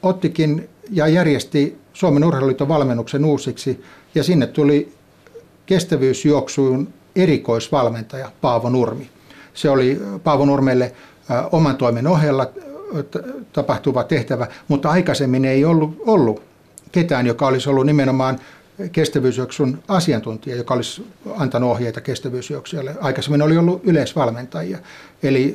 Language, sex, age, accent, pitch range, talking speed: Finnish, male, 60-79, native, 125-150 Hz, 100 wpm